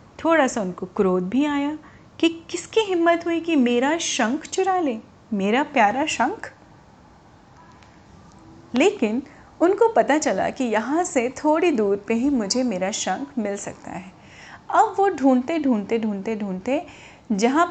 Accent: native